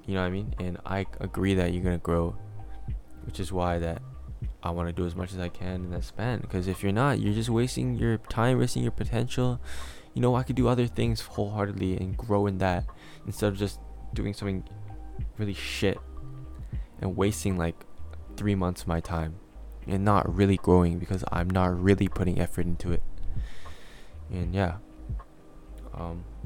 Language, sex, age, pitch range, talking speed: English, male, 20-39, 85-105 Hz, 190 wpm